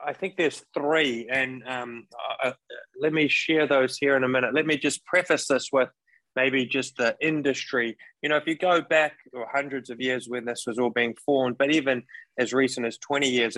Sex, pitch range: male, 120-140 Hz